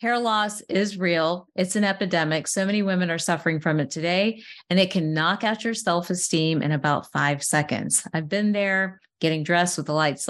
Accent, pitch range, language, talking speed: American, 160-200 Hz, English, 200 wpm